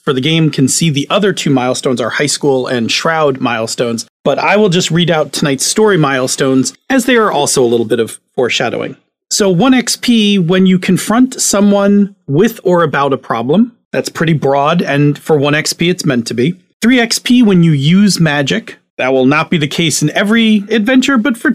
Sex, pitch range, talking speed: male, 135-205 Hz, 205 wpm